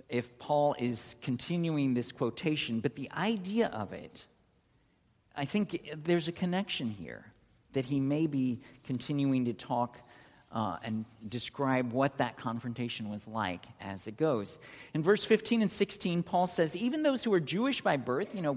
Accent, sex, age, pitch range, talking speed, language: American, male, 50-69, 120-170 Hz, 165 wpm, English